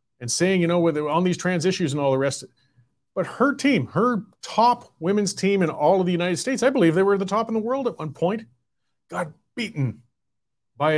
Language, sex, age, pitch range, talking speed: English, male, 40-59, 155-205 Hz, 220 wpm